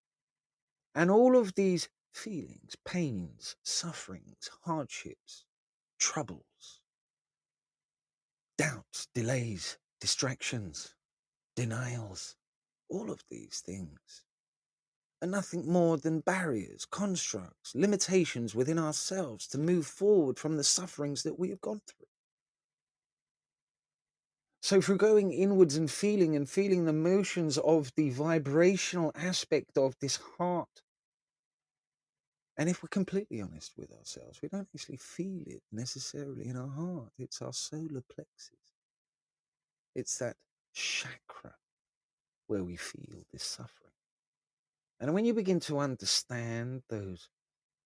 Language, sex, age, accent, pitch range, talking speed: English, male, 40-59, British, 125-175 Hz, 110 wpm